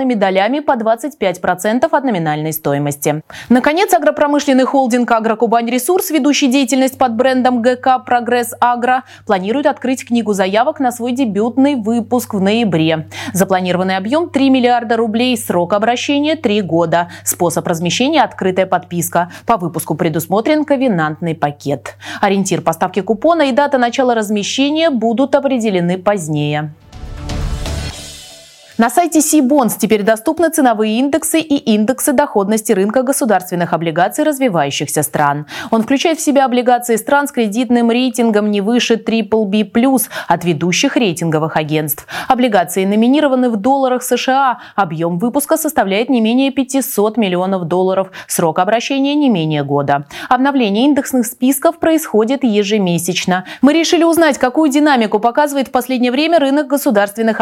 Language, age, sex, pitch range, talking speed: Russian, 20-39, female, 185-270 Hz, 135 wpm